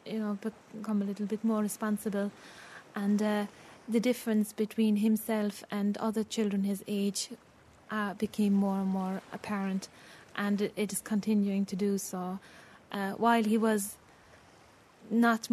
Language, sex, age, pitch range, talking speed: English, female, 20-39, 200-220 Hz, 145 wpm